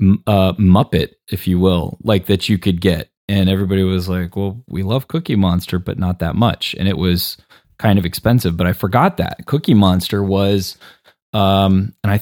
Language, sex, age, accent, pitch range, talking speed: English, male, 20-39, American, 90-110 Hz, 190 wpm